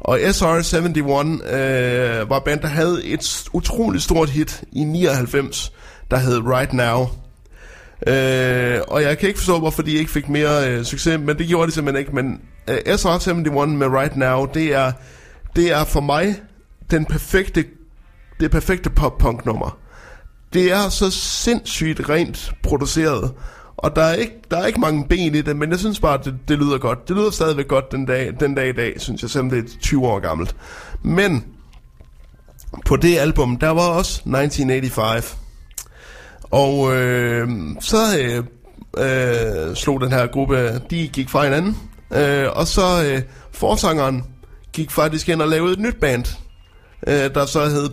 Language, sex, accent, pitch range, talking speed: Danish, male, native, 130-160 Hz, 165 wpm